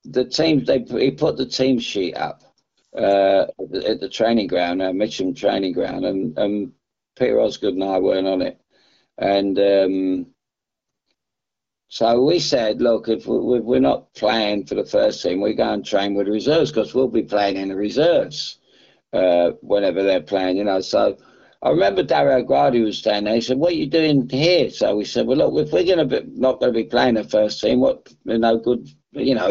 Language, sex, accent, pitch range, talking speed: English, male, British, 100-120 Hz, 205 wpm